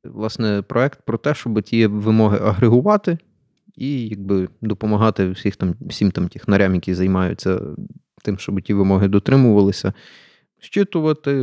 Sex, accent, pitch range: male, native, 100-125 Hz